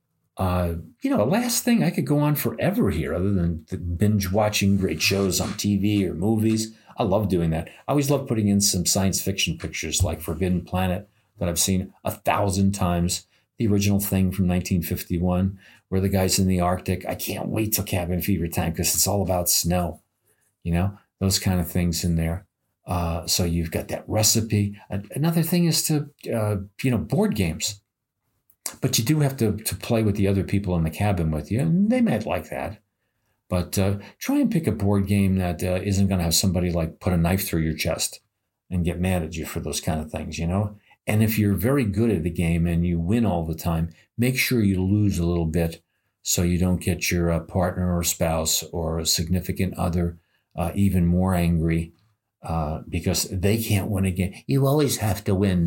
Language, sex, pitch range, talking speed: English, male, 85-105 Hz, 210 wpm